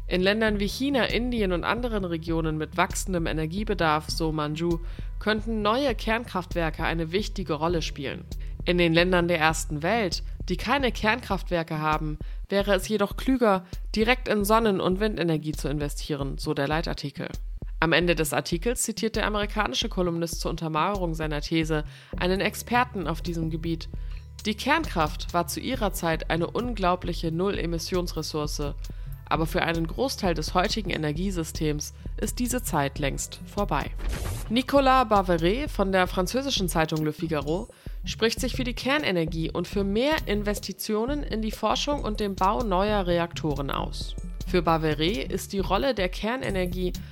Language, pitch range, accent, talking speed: German, 160-210 Hz, German, 150 wpm